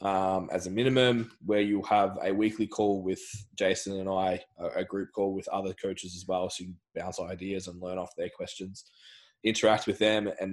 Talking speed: 200 wpm